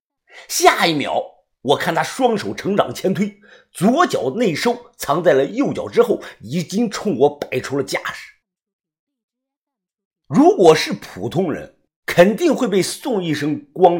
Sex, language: male, Chinese